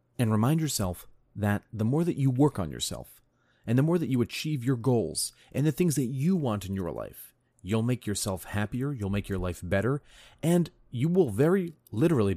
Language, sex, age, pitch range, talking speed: English, male, 30-49, 100-125 Hz, 205 wpm